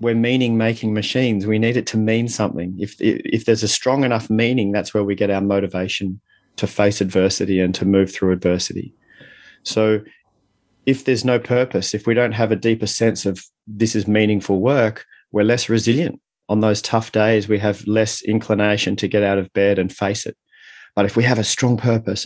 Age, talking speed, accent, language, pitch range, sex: 30-49, 195 wpm, Australian, English, 100-115 Hz, male